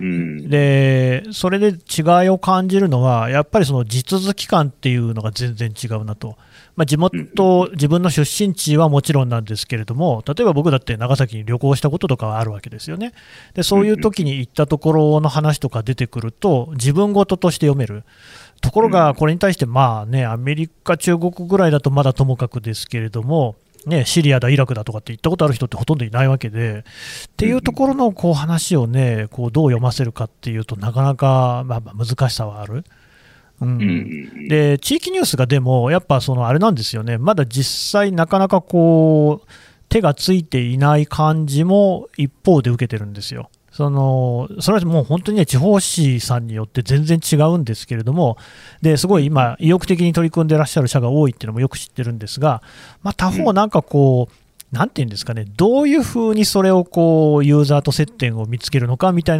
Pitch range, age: 120-165 Hz, 30-49